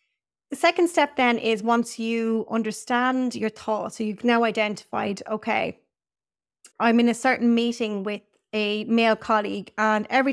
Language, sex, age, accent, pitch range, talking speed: English, female, 30-49, Irish, 210-245 Hz, 150 wpm